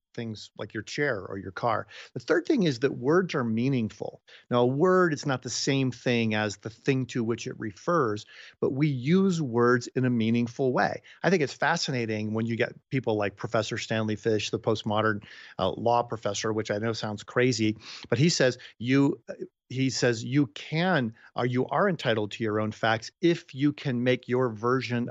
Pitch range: 110-145 Hz